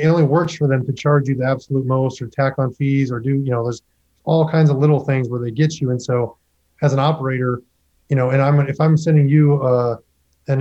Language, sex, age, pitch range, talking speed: English, male, 20-39, 125-145 Hz, 250 wpm